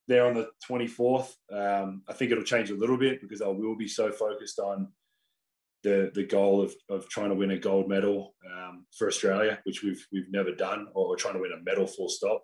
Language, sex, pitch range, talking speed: English, male, 100-130 Hz, 220 wpm